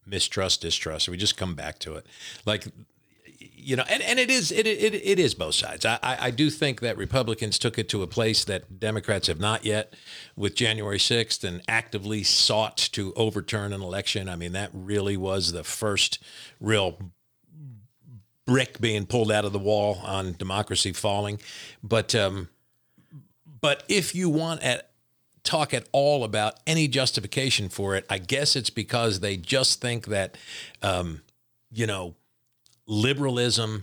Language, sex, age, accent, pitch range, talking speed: English, male, 50-69, American, 100-135 Hz, 165 wpm